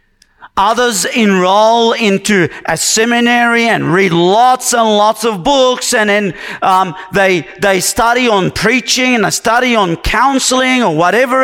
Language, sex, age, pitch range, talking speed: English, male, 40-59, 145-225 Hz, 140 wpm